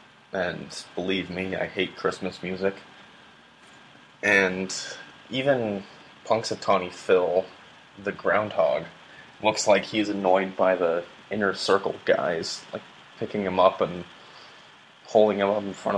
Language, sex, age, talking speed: English, male, 20-39, 120 wpm